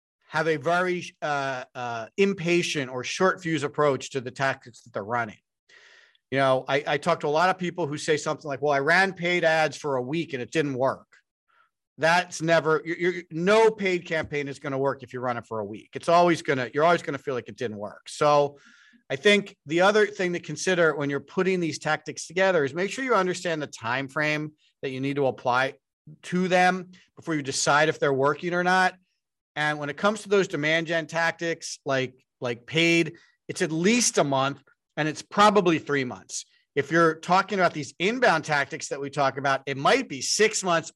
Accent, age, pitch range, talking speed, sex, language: American, 40-59, 140-180 Hz, 215 wpm, male, English